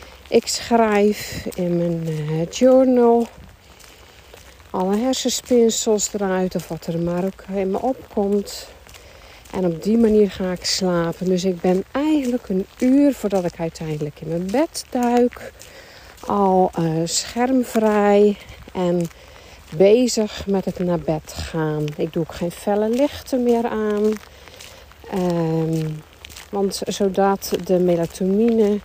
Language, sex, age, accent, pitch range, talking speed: Dutch, female, 50-69, Dutch, 170-225 Hz, 120 wpm